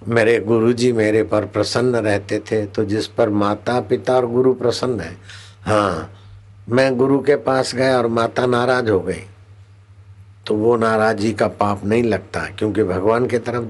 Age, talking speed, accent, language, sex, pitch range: 60-79, 165 wpm, native, Hindi, male, 100-115 Hz